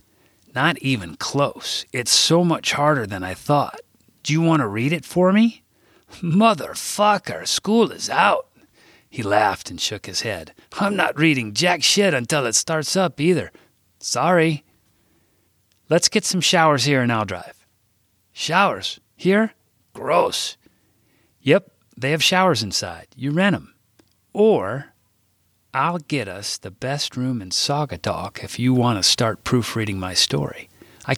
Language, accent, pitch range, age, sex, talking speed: English, American, 105-155 Hz, 40-59, male, 150 wpm